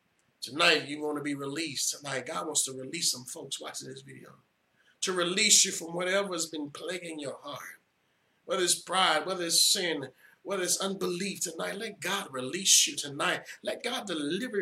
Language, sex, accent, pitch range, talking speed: English, male, American, 135-175 Hz, 180 wpm